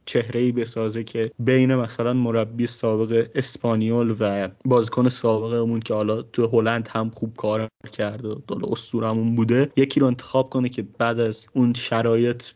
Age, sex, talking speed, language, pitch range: 20-39, male, 160 wpm, Persian, 115-140 Hz